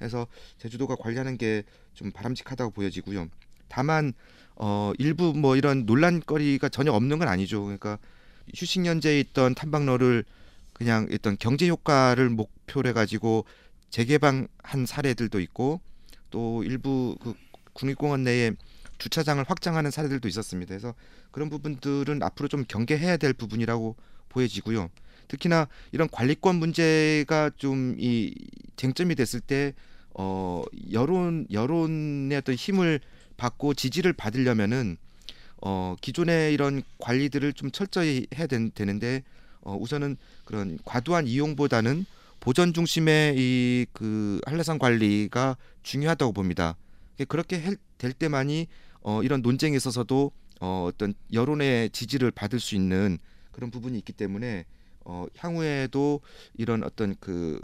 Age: 40-59